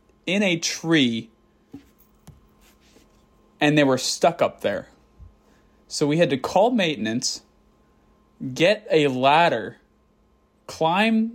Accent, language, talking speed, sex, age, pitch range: American, English, 100 wpm, male, 20-39, 120-150 Hz